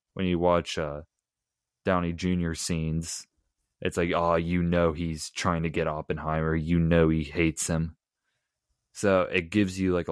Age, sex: 20-39, male